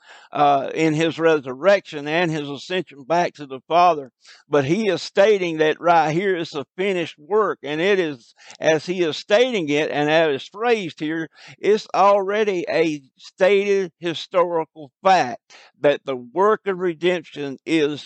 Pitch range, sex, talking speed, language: 140-170 Hz, male, 155 wpm, English